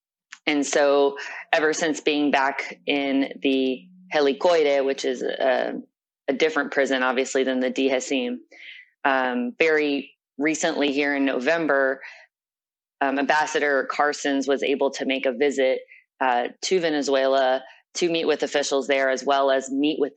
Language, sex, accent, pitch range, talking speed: English, female, American, 135-150 Hz, 140 wpm